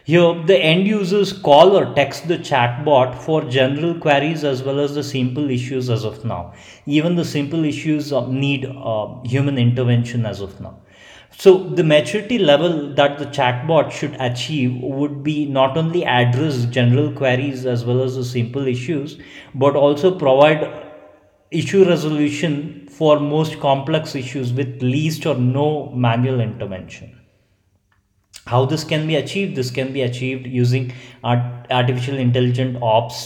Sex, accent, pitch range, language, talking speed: male, Indian, 125-155 Hz, English, 150 wpm